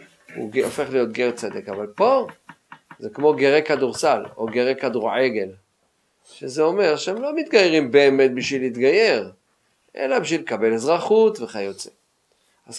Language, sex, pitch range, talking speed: Hebrew, male, 115-150 Hz, 130 wpm